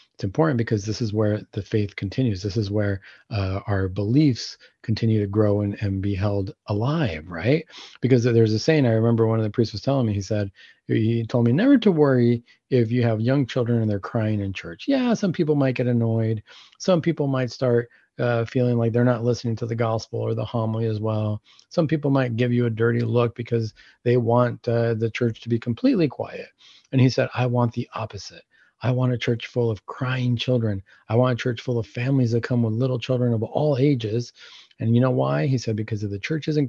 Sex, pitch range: male, 110-145 Hz